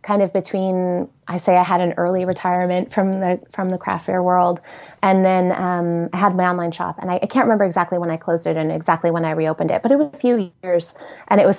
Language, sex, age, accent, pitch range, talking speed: English, female, 20-39, American, 170-210 Hz, 260 wpm